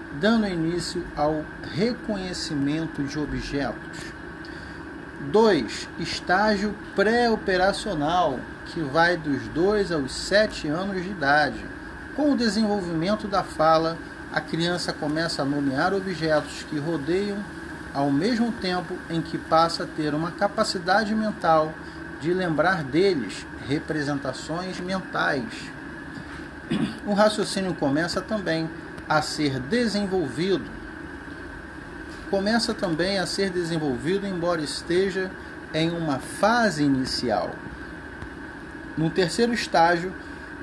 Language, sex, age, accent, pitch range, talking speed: Portuguese, male, 40-59, Brazilian, 155-205 Hz, 100 wpm